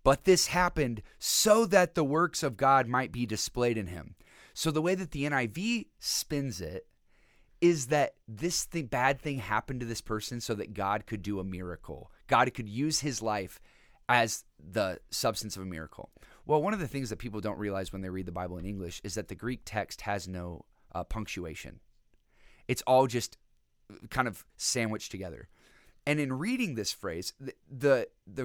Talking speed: 185 wpm